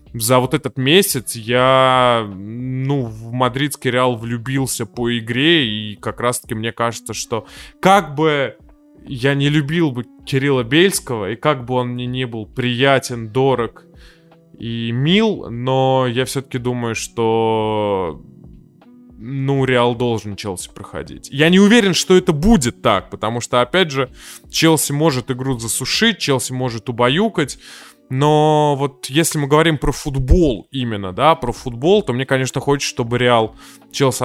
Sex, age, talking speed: male, 20-39, 145 wpm